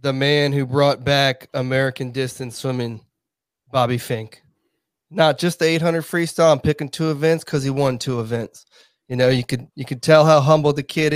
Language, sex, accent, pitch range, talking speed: English, male, American, 130-155 Hz, 190 wpm